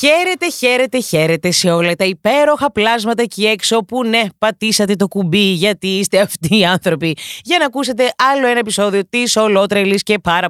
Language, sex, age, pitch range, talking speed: Greek, female, 20-39, 175-230 Hz, 170 wpm